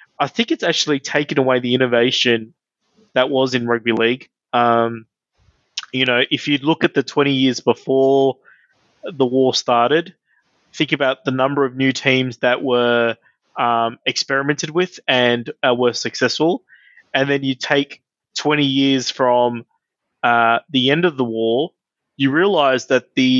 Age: 20-39